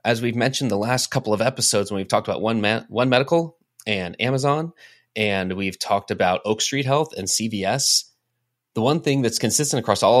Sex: male